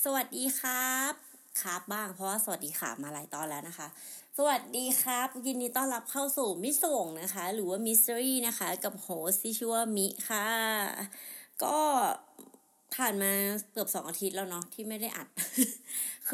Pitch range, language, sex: 185-250 Hz, Thai, female